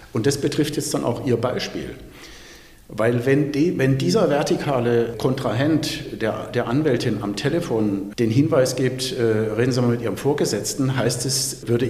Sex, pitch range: male, 115-140 Hz